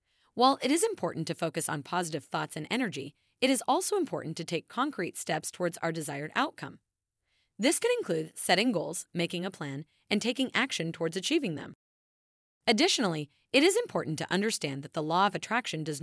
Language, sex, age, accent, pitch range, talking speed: English, female, 30-49, American, 155-240 Hz, 185 wpm